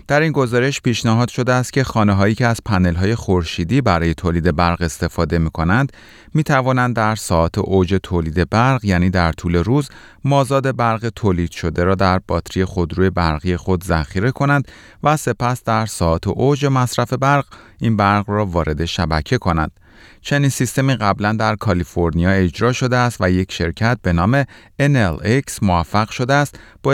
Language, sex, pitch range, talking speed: Persian, male, 90-125 Hz, 155 wpm